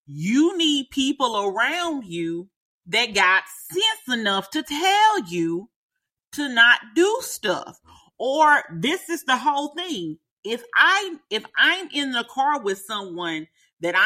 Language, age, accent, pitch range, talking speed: English, 40-59, American, 175-270 Hz, 130 wpm